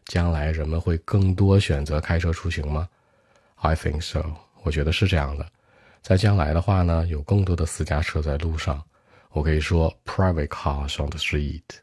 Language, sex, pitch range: Chinese, male, 75-95 Hz